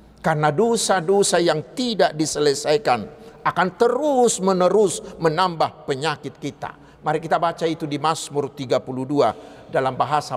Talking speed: 115 wpm